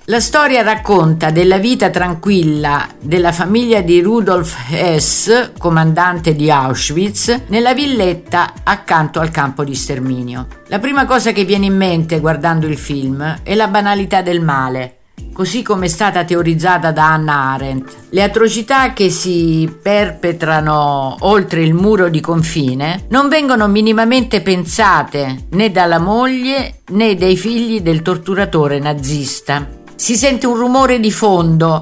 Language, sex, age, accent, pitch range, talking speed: Italian, female, 50-69, native, 155-205 Hz, 140 wpm